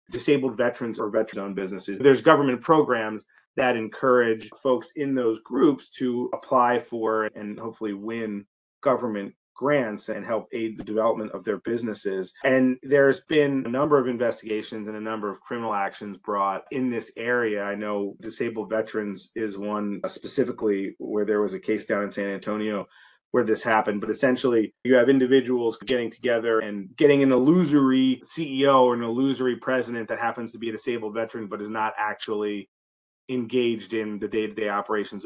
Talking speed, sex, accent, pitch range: 170 wpm, male, American, 105-125 Hz